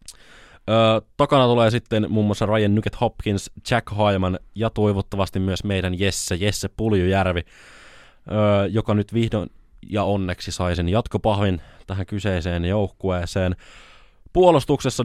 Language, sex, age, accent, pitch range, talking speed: Finnish, male, 20-39, native, 90-115 Hz, 125 wpm